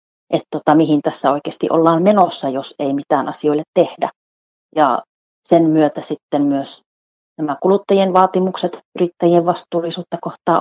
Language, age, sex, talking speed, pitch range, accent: Finnish, 30-49, female, 130 wpm, 155-185 Hz, native